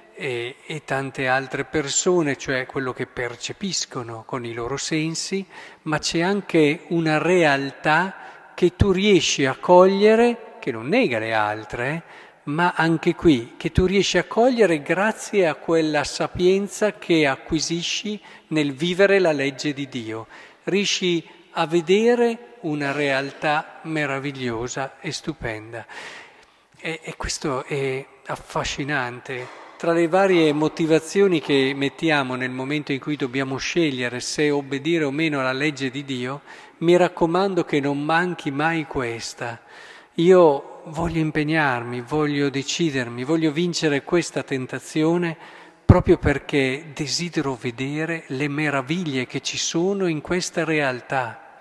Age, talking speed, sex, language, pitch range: 50-69, 125 wpm, male, Italian, 135-175 Hz